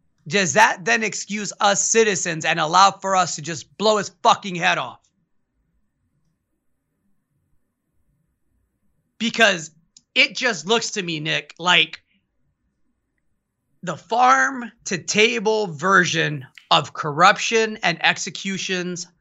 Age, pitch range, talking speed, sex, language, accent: 30-49, 175-220 Hz, 105 wpm, male, English, American